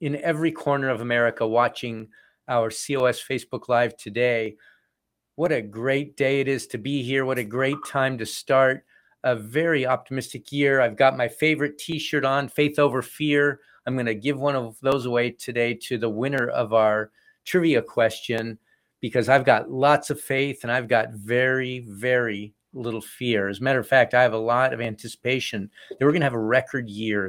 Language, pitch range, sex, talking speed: English, 115-140 Hz, male, 185 wpm